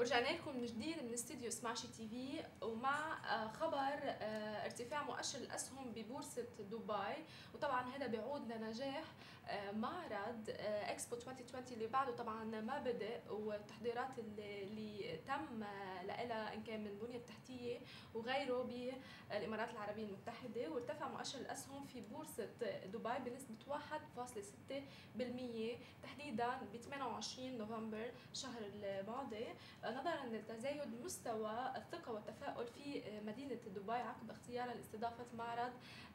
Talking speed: 110 wpm